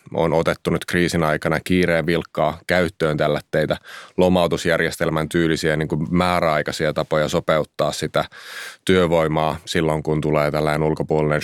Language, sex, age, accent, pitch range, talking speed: Finnish, male, 30-49, native, 75-85 Hz, 120 wpm